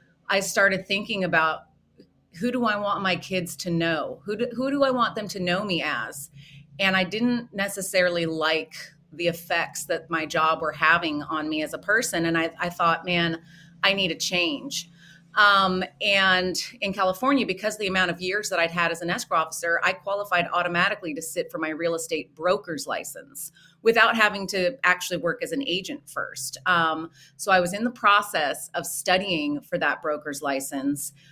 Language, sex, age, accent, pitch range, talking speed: English, female, 30-49, American, 165-200 Hz, 185 wpm